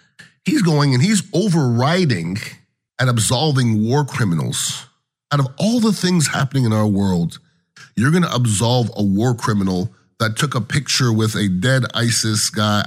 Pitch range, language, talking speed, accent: 120-160 Hz, English, 160 wpm, American